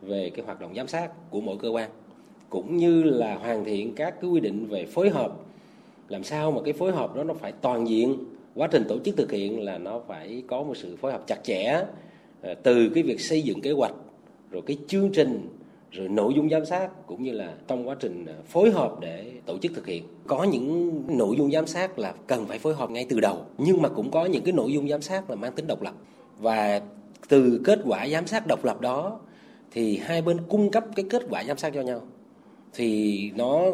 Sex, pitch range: male, 115-185 Hz